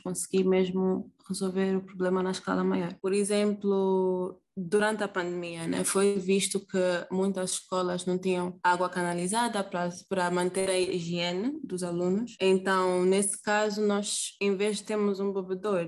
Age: 20-39